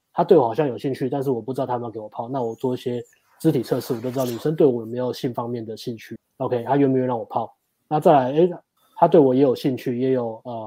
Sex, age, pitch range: male, 20-39, 120-150 Hz